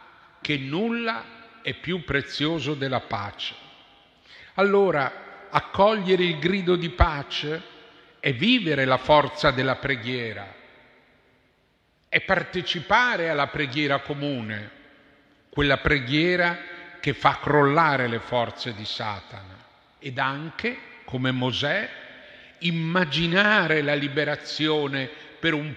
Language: Italian